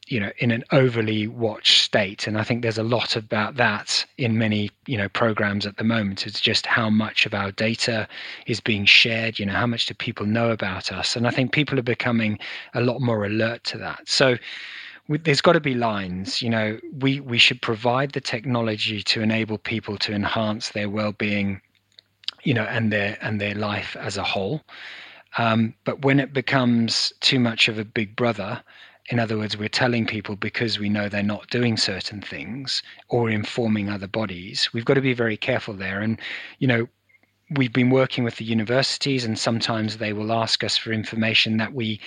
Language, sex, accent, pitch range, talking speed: English, male, British, 105-125 Hz, 200 wpm